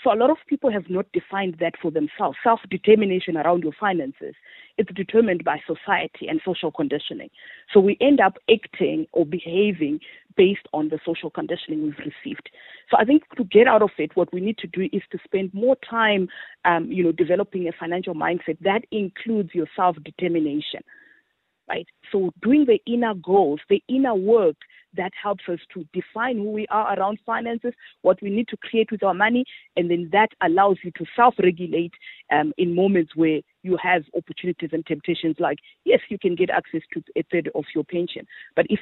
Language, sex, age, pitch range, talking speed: English, female, 40-59, 170-225 Hz, 185 wpm